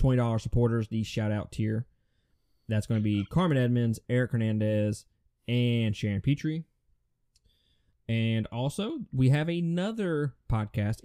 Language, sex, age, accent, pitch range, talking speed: English, male, 20-39, American, 105-125 Hz, 120 wpm